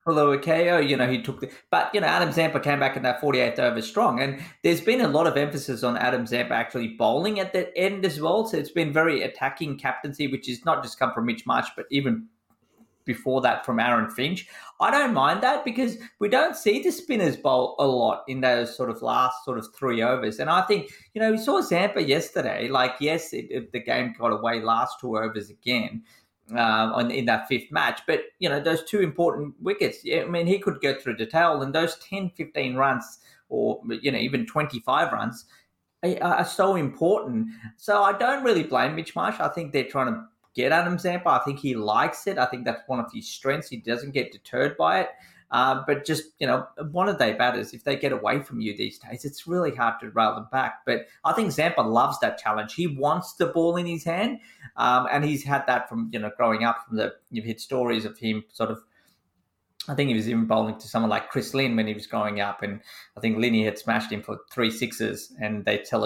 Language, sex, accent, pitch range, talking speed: English, male, Australian, 115-165 Hz, 230 wpm